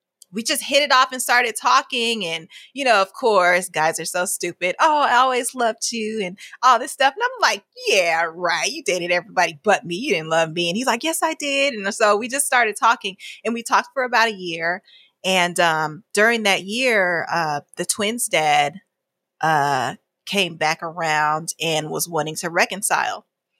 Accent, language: American, English